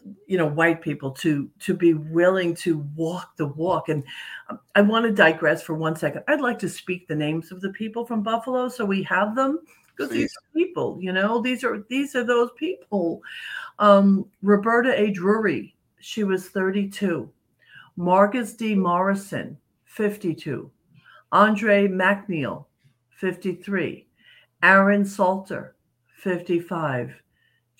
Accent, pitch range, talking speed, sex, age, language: American, 160-205 Hz, 135 wpm, female, 60-79, English